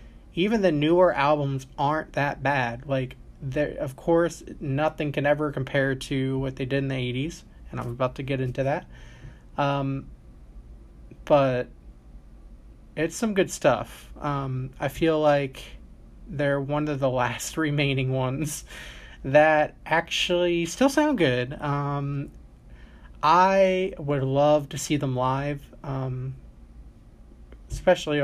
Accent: American